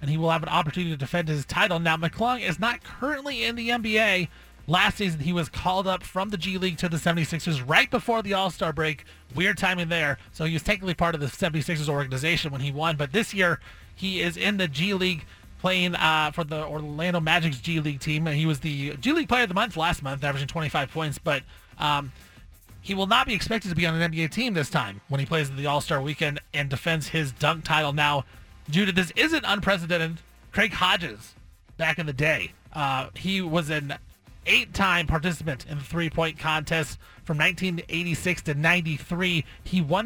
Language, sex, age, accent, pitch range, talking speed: English, male, 30-49, American, 155-185 Hz, 205 wpm